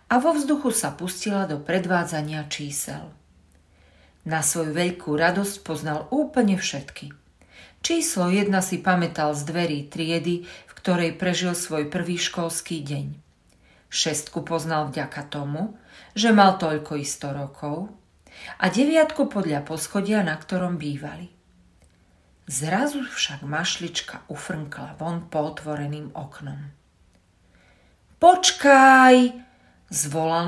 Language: Slovak